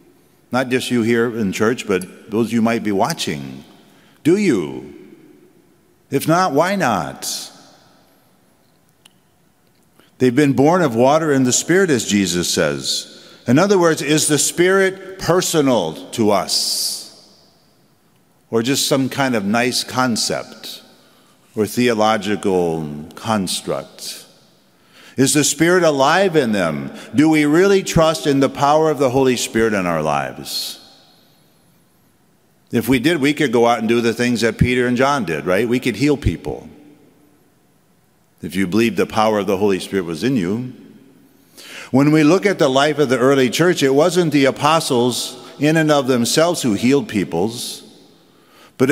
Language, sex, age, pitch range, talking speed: English, male, 50-69, 115-155 Hz, 150 wpm